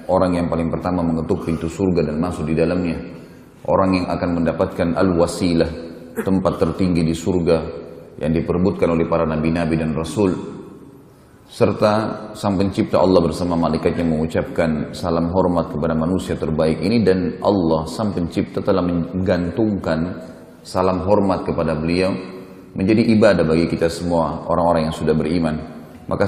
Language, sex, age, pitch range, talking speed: Indonesian, male, 30-49, 80-95 Hz, 135 wpm